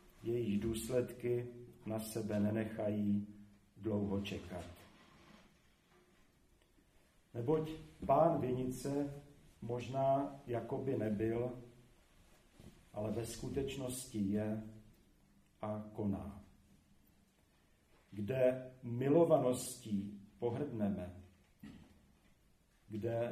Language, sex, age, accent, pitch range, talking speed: Czech, male, 50-69, native, 105-125 Hz, 60 wpm